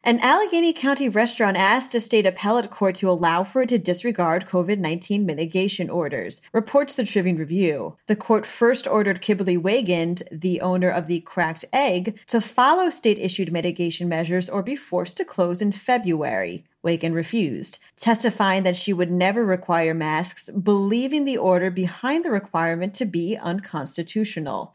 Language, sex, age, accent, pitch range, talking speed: English, female, 30-49, American, 175-220 Hz, 155 wpm